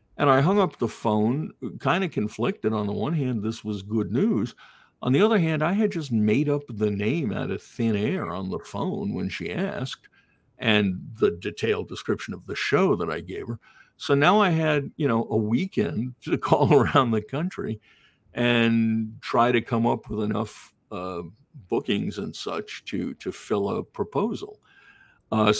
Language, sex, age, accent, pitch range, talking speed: English, male, 60-79, American, 110-155 Hz, 185 wpm